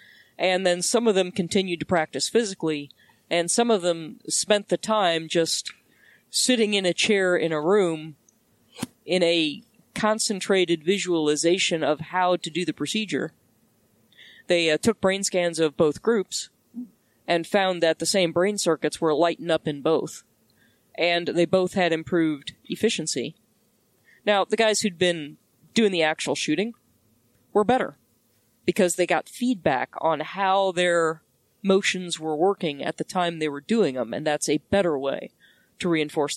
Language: English